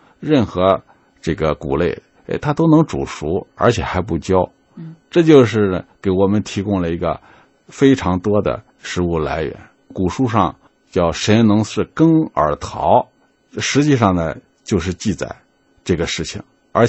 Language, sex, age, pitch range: Chinese, male, 60-79, 85-120 Hz